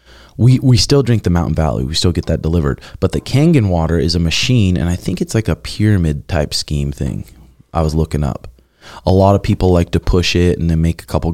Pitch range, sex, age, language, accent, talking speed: 80-105 Hz, male, 20-39, English, American, 245 wpm